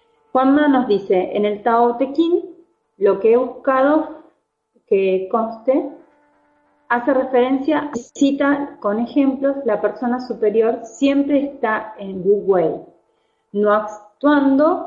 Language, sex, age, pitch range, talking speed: Spanish, female, 30-49, 190-255 Hz, 115 wpm